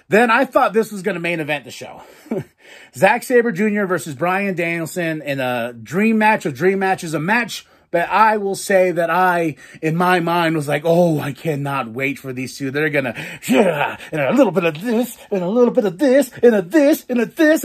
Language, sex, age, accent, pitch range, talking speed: English, male, 30-49, American, 140-190 Hz, 230 wpm